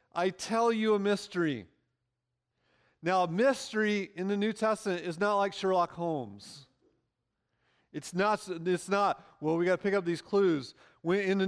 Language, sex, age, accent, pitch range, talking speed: English, male, 40-59, American, 150-195 Hz, 165 wpm